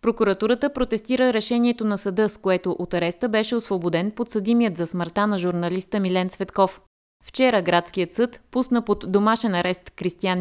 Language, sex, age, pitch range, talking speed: Bulgarian, female, 30-49, 175-225 Hz, 150 wpm